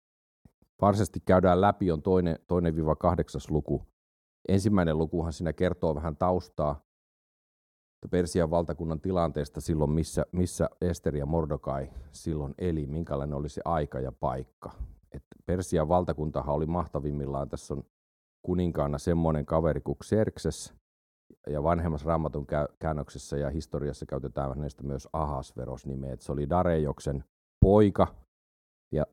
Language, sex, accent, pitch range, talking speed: Finnish, male, native, 70-85 Hz, 120 wpm